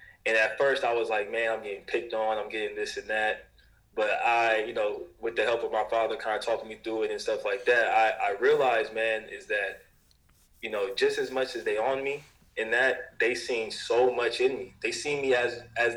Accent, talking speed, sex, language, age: American, 240 wpm, male, English, 20-39